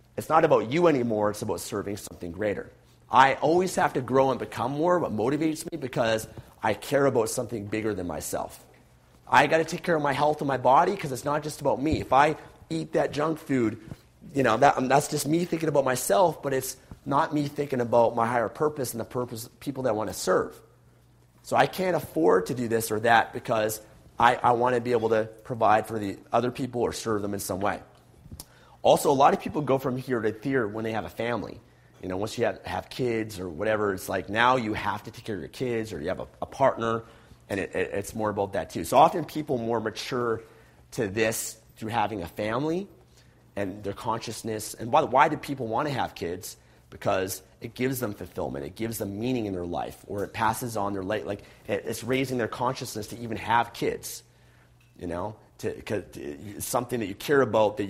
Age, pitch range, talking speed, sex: 30-49, 105-135 Hz, 225 wpm, male